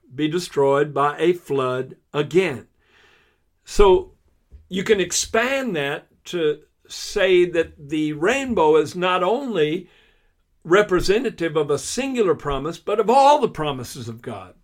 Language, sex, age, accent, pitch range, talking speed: English, male, 60-79, American, 140-200 Hz, 125 wpm